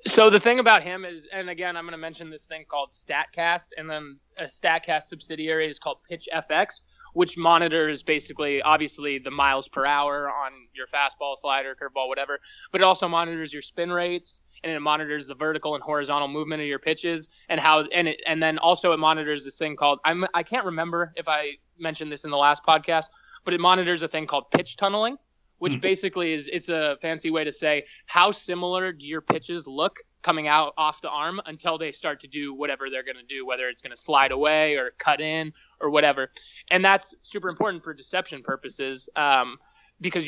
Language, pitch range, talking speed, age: English, 145-175 Hz, 210 wpm, 20-39